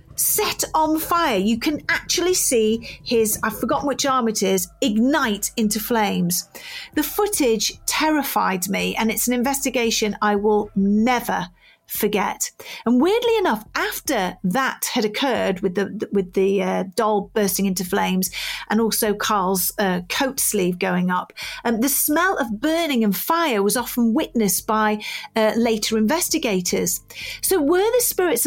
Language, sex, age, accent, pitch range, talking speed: English, female, 40-59, British, 195-275 Hz, 150 wpm